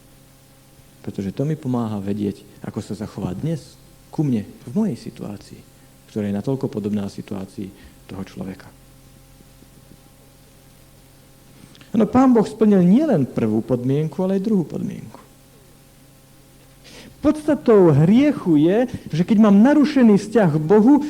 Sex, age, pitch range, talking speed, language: male, 50-69, 150-225 Hz, 120 wpm, Slovak